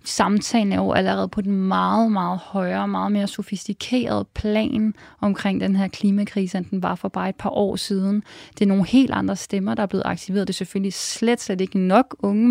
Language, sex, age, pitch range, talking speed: Danish, female, 30-49, 195-225 Hz, 210 wpm